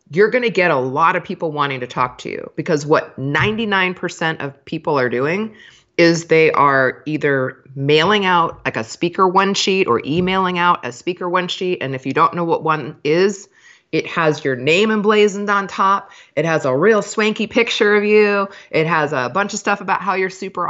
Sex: female